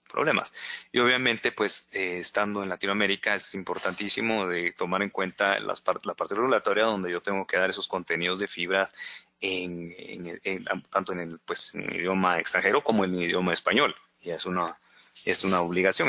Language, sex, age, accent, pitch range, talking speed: Portuguese, male, 30-49, Mexican, 90-120 Hz, 190 wpm